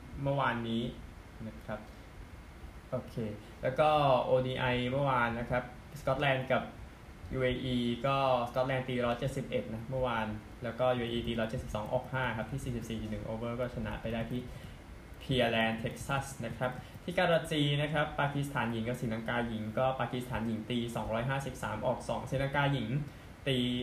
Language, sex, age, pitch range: Thai, male, 20-39, 110-130 Hz